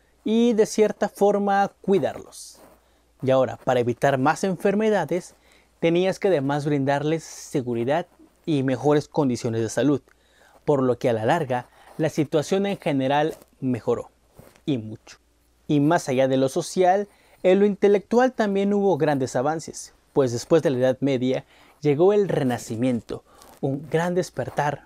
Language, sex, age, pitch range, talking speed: Spanish, male, 30-49, 130-185 Hz, 140 wpm